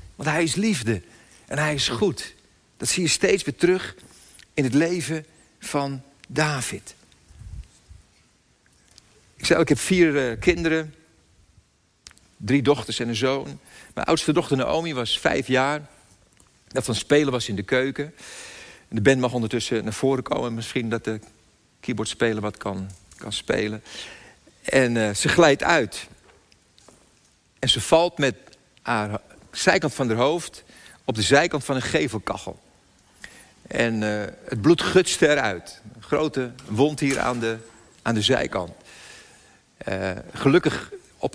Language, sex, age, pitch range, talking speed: Dutch, male, 50-69, 115-150 Hz, 140 wpm